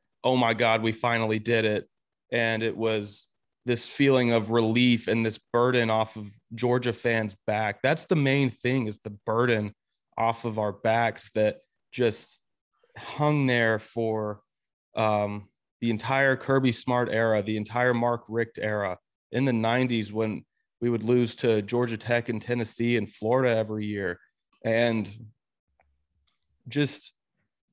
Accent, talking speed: American, 145 wpm